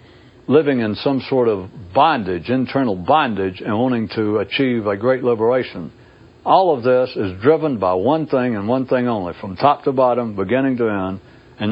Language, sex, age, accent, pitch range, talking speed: English, male, 60-79, American, 100-125 Hz, 180 wpm